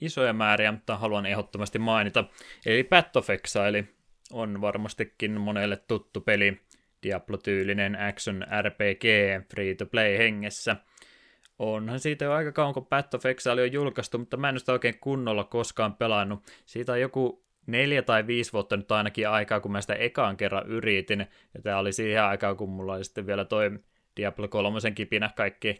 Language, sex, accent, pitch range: Finnish, male, native, 100-115 Hz